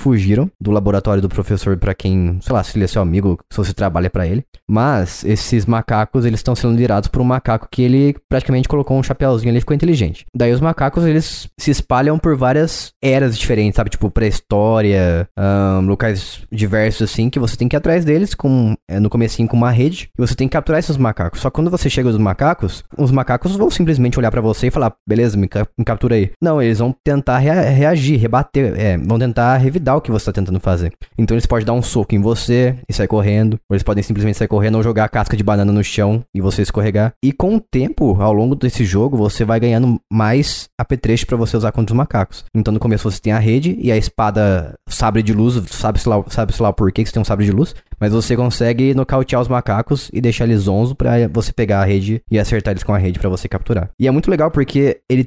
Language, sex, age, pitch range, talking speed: Portuguese, male, 20-39, 105-130 Hz, 235 wpm